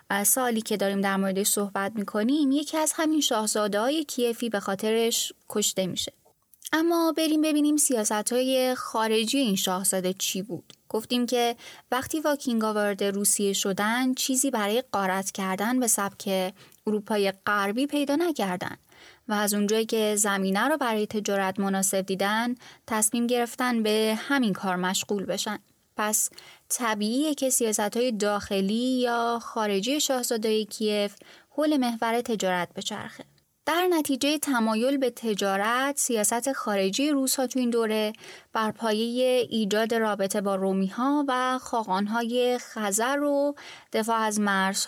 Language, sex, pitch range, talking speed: Persian, female, 200-250 Hz, 130 wpm